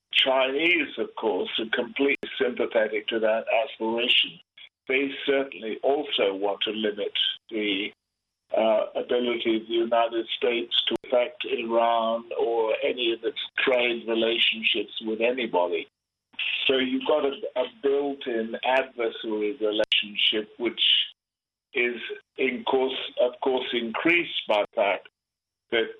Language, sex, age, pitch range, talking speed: English, male, 50-69, 110-150 Hz, 120 wpm